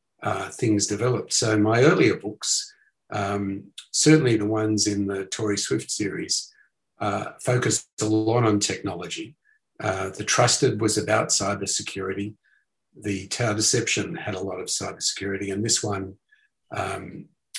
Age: 50-69